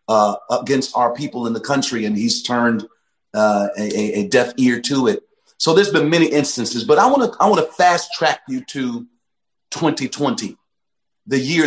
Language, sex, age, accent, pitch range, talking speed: English, male, 40-59, American, 125-165 Hz, 185 wpm